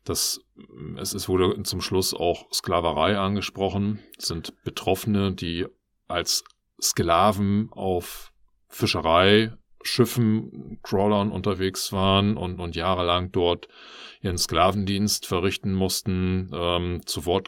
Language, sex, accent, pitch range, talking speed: German, male, German, 85-100 Hz, 110 wpm